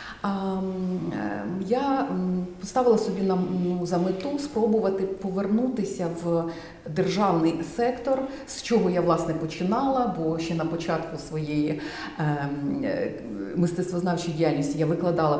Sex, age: female, 40-59